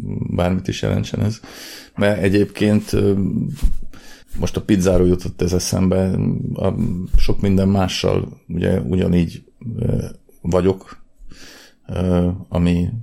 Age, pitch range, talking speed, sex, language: 40-59, 85-95 Hz, 95 wpm, male, Hungarian